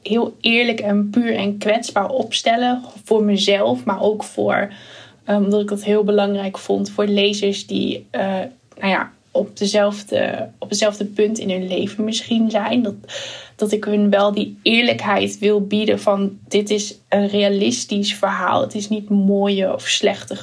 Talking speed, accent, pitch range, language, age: 160 wpm, Dutch, 195-215 Hz, Dutch, 10-29